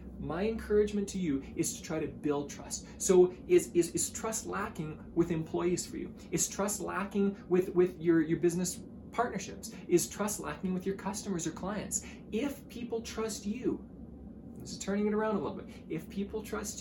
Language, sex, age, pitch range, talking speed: English, male, 20-39, 150-210 Hz, 185 wpm